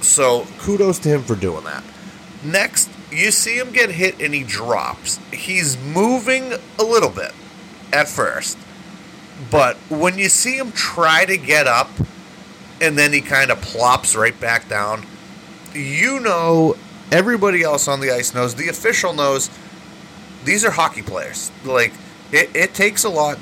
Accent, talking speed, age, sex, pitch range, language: American, 160 wpm, 30-49, male, 125-180 Hz, English